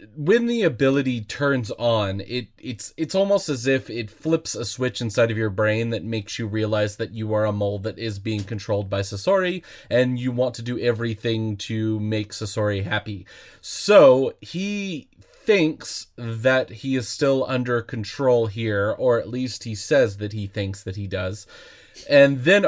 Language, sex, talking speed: English, male, 175 wpm